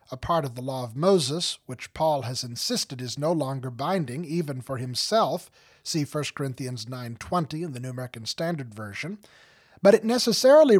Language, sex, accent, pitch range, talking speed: English, male, American, 130-180 Hz, 170 wpm